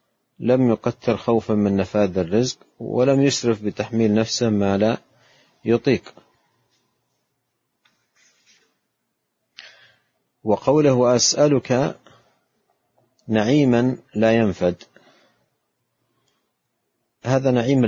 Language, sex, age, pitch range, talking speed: Arabic, male, 50-69, 105-125 Hz, 65 wpm